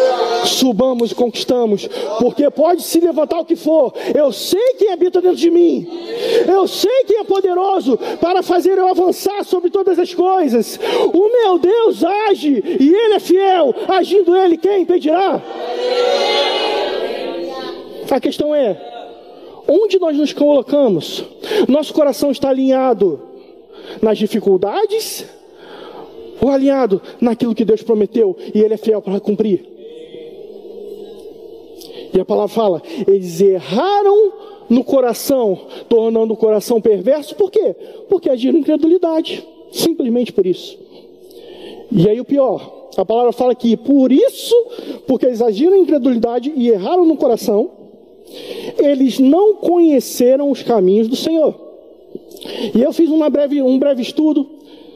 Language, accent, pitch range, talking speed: Portuguese, Brazilian, 260-405 Hz, 130 wpm